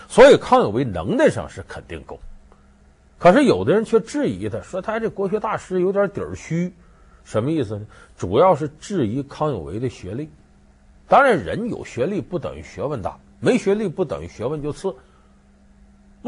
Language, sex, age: Chinese, male, 50-69